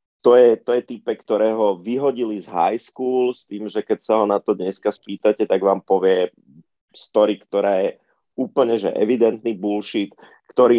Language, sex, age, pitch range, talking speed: Slovak, male, 30-49, 100-110 Hz, 180 wpm